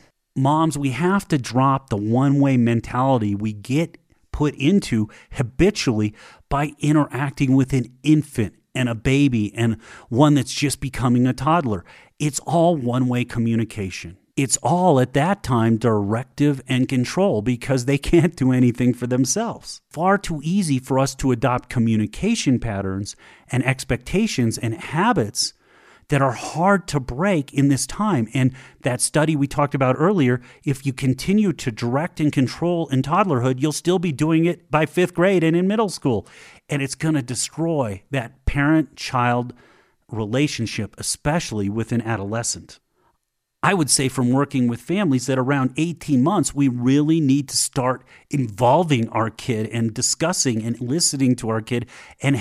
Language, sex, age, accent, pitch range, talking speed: English, male, 40-59, American, 120-150 Hz, 155 wpm